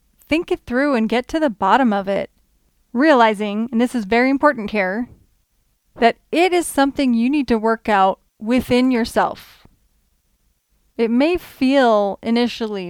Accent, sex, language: American, female, English